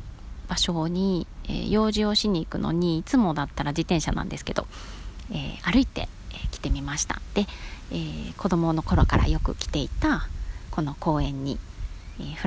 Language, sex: Japanese, female